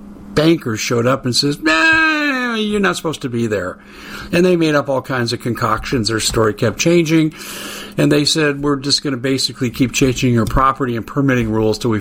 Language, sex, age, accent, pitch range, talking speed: English, male, 50-69, American, 110-160 Hz, 200 wpm